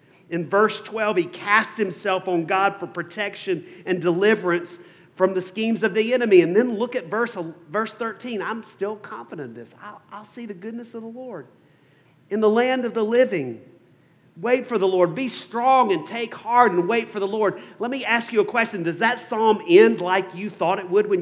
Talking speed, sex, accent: 210 wpm, male, American